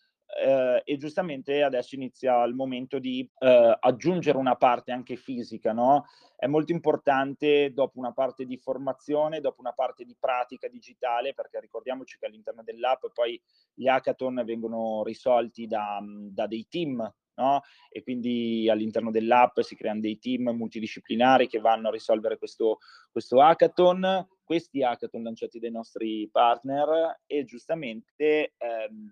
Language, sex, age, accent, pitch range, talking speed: Italian, male, 30-49, native, 120-150 Hz, 135 wpm